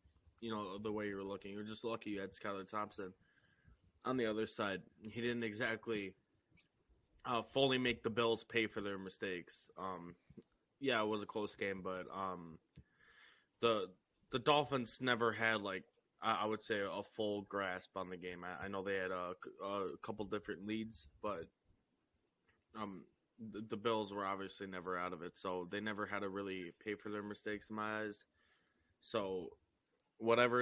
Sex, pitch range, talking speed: male, 95-110 Hz, 180 wpm